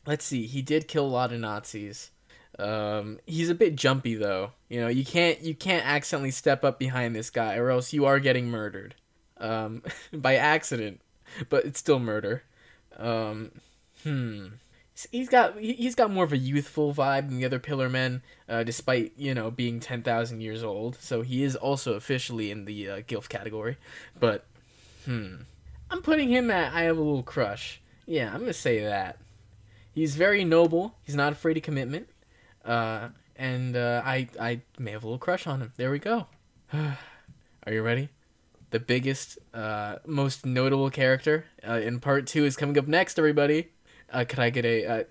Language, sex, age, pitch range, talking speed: English, male, 20-39, 115-150 Hz, 185 wpm